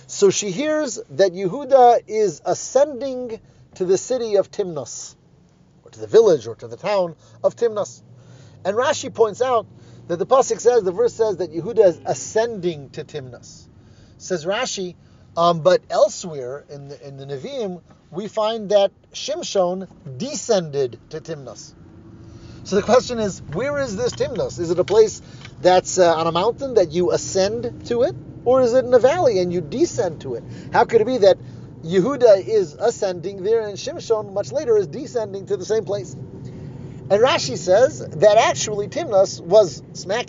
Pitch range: 160-235 Hz